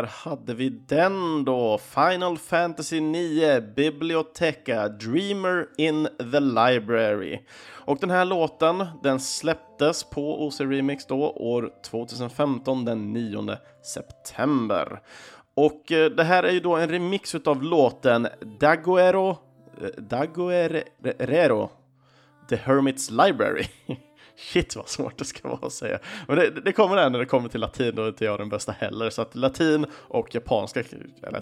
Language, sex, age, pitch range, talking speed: Swedish, male, 30-49, 115-165 Hz, 140 wpm